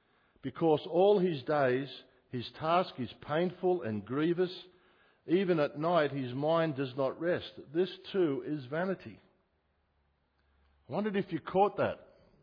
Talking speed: 135 wpm